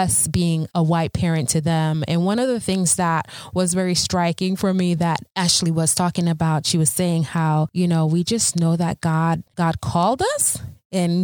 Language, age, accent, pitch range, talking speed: English, 20-39, American, 155-180 Hz, 205 wpm